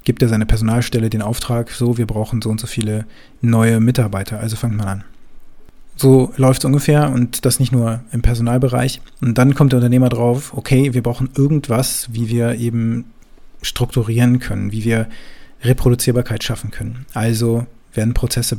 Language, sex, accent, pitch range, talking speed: German, male, German, 110-130 Hz, 170 wpm